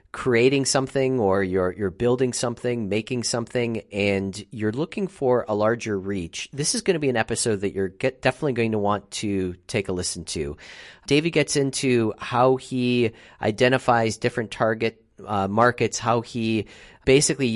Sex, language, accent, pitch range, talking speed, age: male, English, American, 95-125 Hz, 165 wpm, 40-59